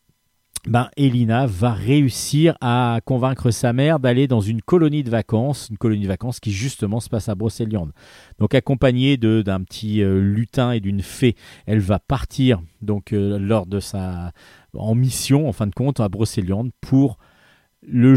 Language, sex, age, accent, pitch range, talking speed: French, male, 40-59, French, 100-130 Hz, 170 wpm